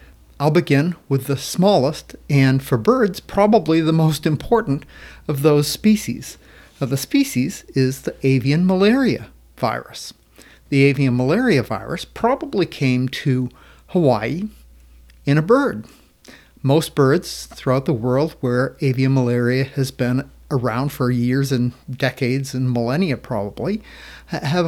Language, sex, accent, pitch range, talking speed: English, male, American, 125-150 Hz, 130 wpm